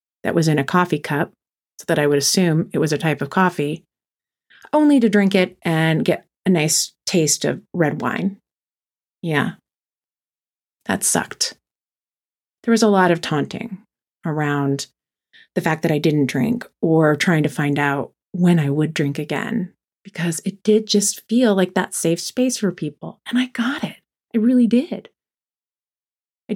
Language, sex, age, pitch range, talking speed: English, female, 30-49, 155-215 Hz, 165 wpm